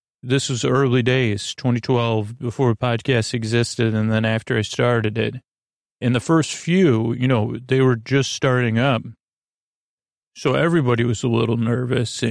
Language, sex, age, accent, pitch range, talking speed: English, male, 40-59, American, 115-130 Hz, 150 wpm